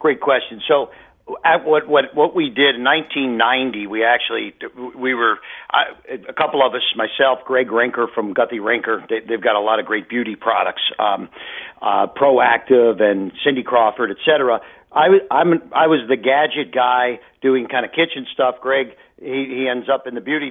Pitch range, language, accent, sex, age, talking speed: 125-150 Hz, English, American, male, 50-69, 180 wpm